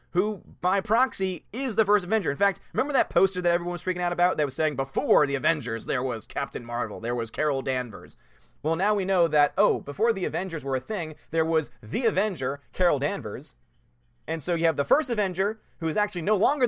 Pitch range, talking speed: 145-200 Hz, 225 wpm